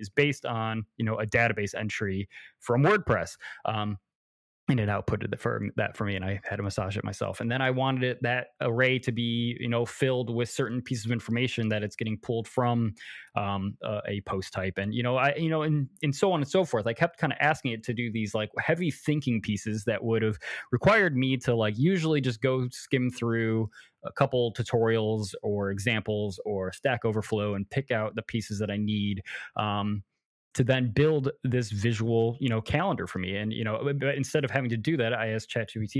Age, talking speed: 20-39, 215 wpm